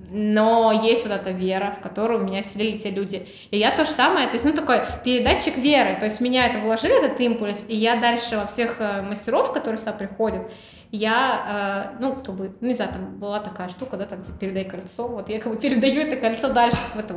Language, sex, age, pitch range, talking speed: Russian, female, 20-39, 205-240 Hz, 225 wpm